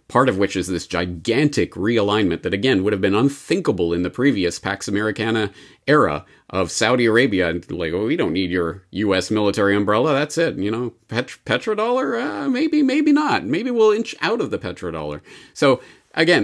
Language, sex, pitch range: English, male, 95-130 Hz